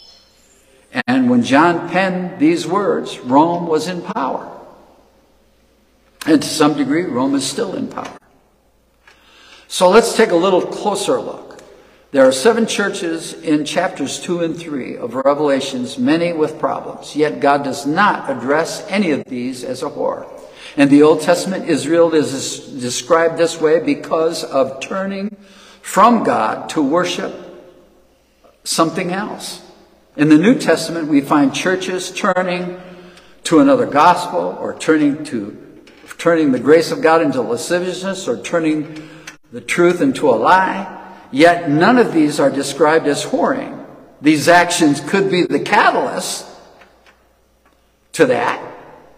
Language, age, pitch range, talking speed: English, 60-79, 155-220 Hz, 140 wpm